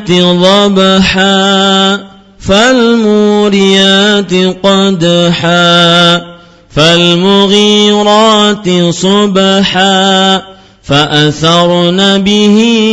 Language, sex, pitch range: Malay, male, 175-210 Hz